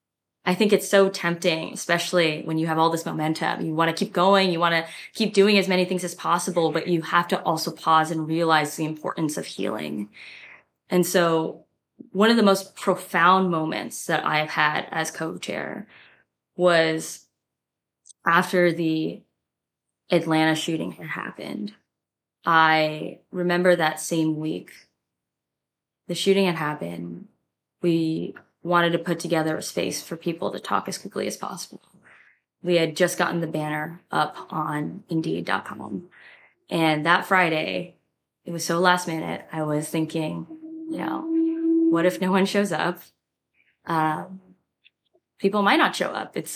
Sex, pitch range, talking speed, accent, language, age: female, 160-185 Hz, 150 wpm, American, English, 20-39